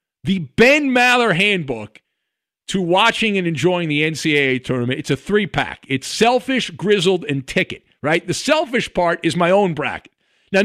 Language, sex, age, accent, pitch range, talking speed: English, male, 50-69, American, 140-210 Hz, 160 wpm